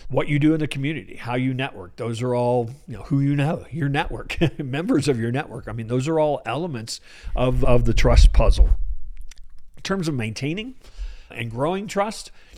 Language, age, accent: English, 50-69, American